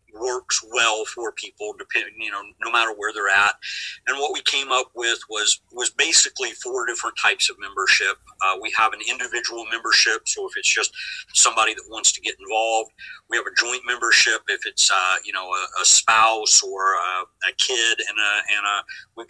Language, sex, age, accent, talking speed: English, male, 50-69, American, 200 wpm